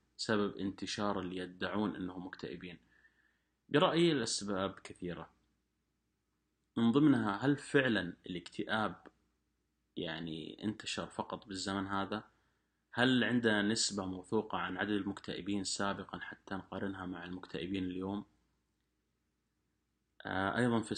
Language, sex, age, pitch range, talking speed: Arabic, male, 30-49, 95-110 Hz, 100 wpm